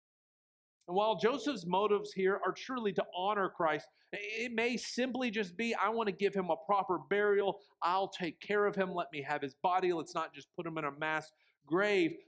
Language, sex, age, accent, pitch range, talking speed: English, male, 50-69, American, 160-215 Hz, 205 wpm